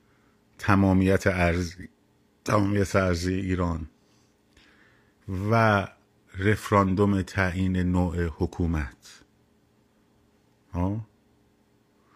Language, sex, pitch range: Persian, male, 90-120 Hz